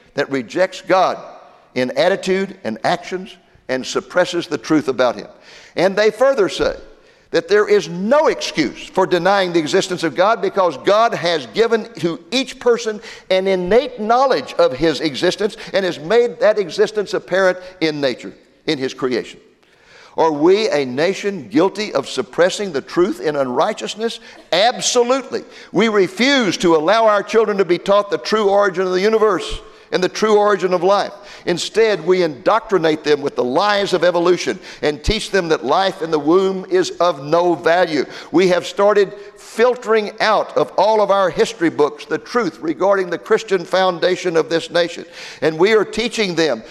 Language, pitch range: English, 175-225 Hz